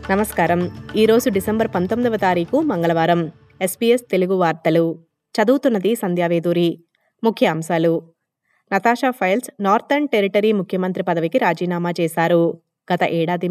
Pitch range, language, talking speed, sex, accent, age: 175-220 Hz, Telugu, 100 wpm, female, native, 20-39